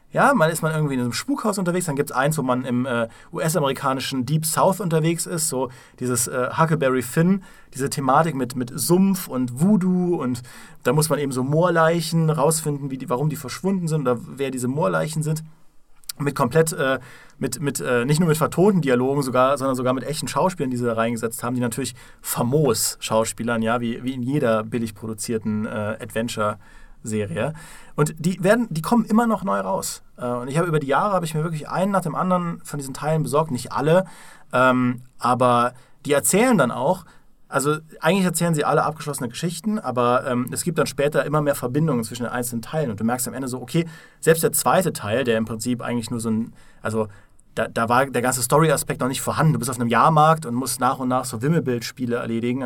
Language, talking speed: German, 210 wpm